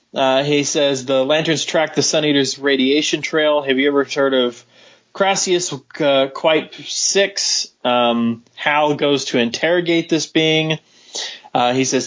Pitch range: 125-155 Hz